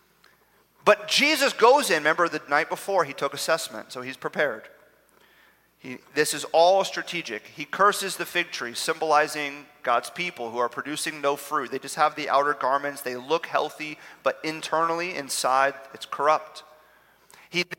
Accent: American